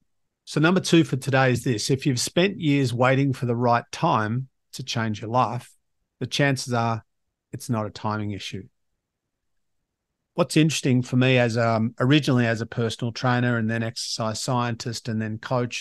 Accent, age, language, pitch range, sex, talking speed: Australian, 50-69, English, 115-135 Hz, male, 170 wpm